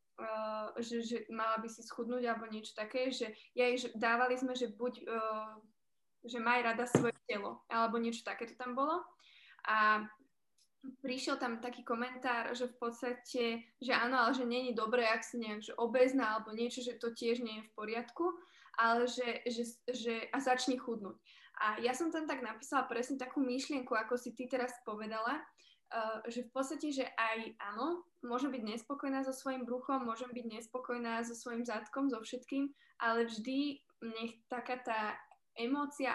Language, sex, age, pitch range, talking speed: Slovak, female, 20-39, 225-255 Hz, 175 wpm